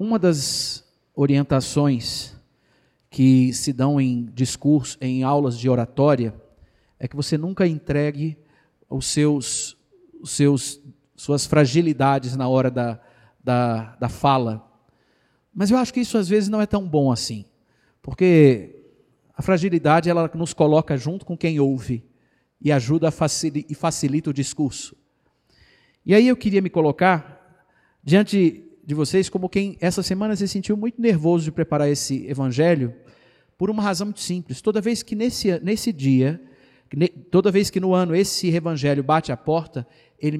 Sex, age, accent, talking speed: male, 50-69, Brazilian, 150 wpm